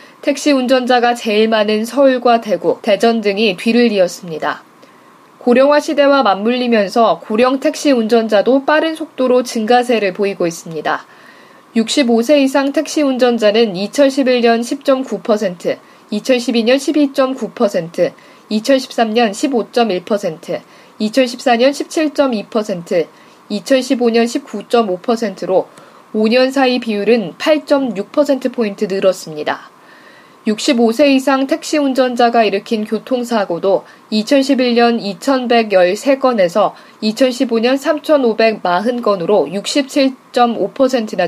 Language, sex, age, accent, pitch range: Korean, female, 20-39, native, 215-265 Hz